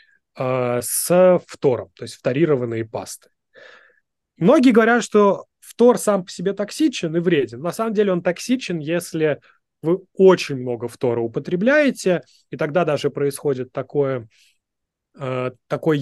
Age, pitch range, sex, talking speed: 20-39, 125-175 Hz, male, 125 wpm